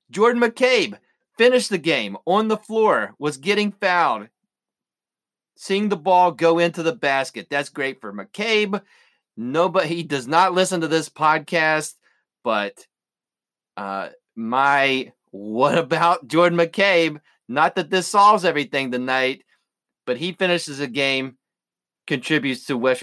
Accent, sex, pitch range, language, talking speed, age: American, male, 140-195 Hz, English, 135 wpm, 30-49